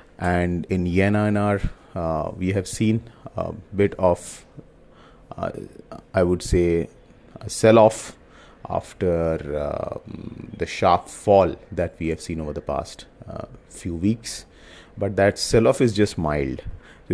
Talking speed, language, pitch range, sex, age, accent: 135 wpm, English, 85-105 Hz, male, 30-49, Indian